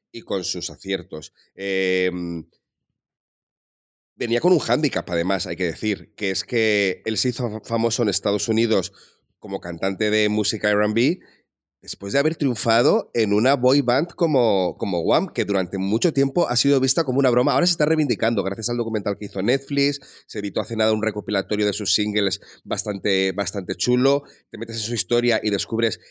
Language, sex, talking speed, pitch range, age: Spanish, male, 180 wpm, 100-120 Hz, 30-49